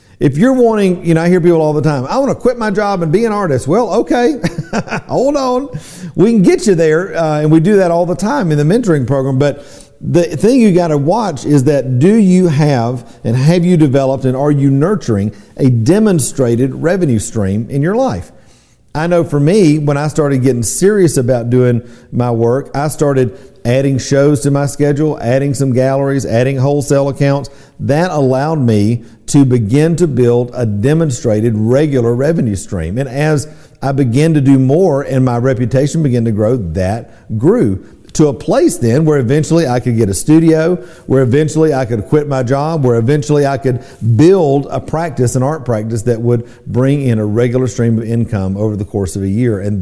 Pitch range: 120-160 Hz